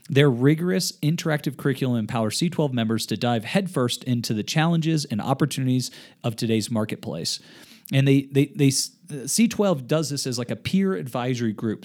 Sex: male